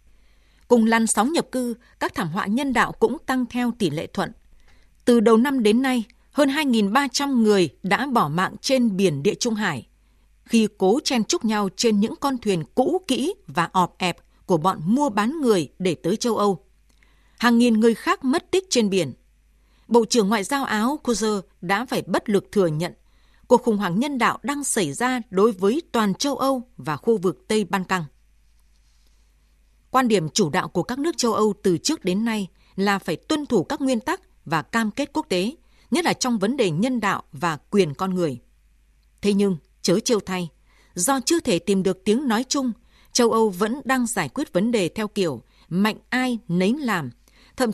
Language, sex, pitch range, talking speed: Vietnamese, female, 185-250 Hz, 200 wpm